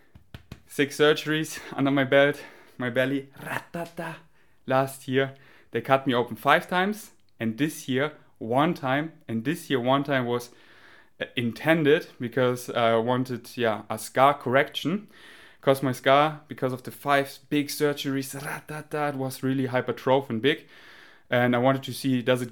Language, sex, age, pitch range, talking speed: English, male, 30-49, 120-150 Hz, 155 wpm